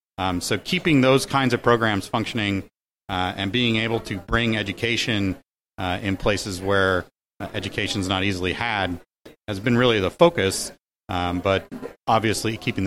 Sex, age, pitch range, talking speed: male, 40-59, 95-120 Hz, 155 wpm